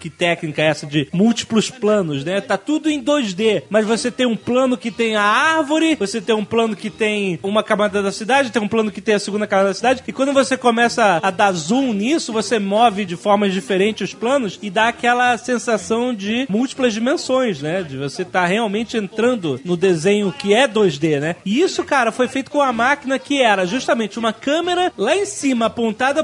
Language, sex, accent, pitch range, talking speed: Portuguese, male, Brazilian, 210-285 Hz, 210 wpm